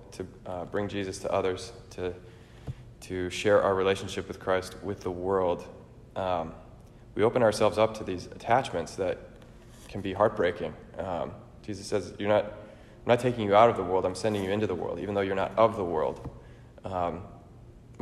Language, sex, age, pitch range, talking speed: English, male, 20-39, 95-115 Hz, 185 wpm